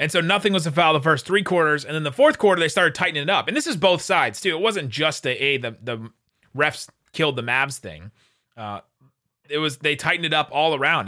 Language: English